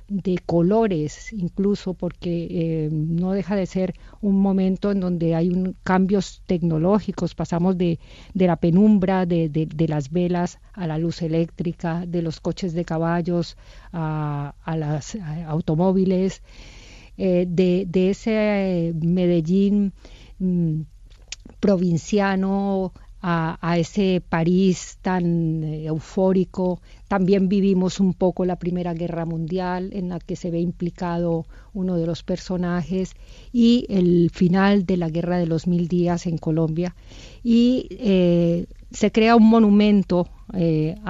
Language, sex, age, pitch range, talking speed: Spanish, female, 50-69, 170-195 Hz, 135 wpm